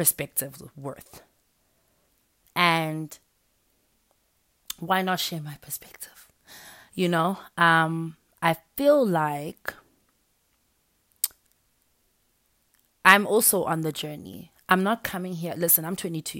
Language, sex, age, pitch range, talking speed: English, female, 20-39, 140-175 Hz, 95 wpm